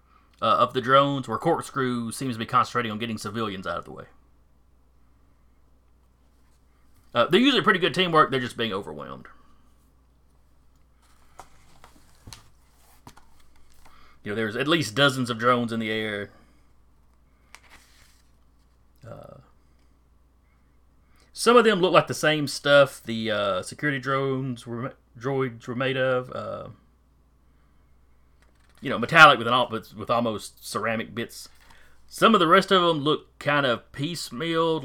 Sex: male